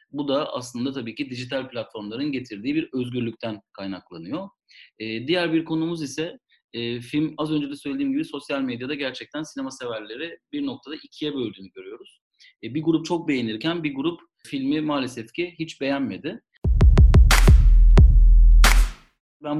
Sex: male